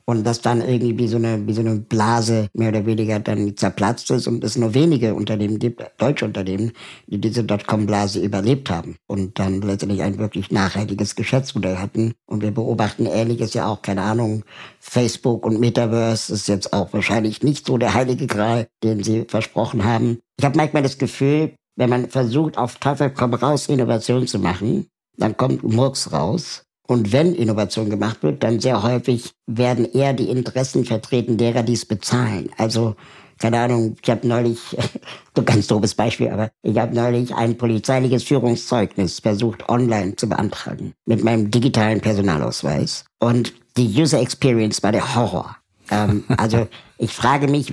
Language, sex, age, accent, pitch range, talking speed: German, male, 60-79, German, 110-125 Hz, 170 wpm